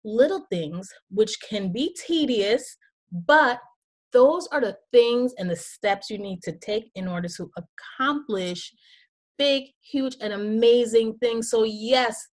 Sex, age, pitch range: female, 30-49, 195-265 Hz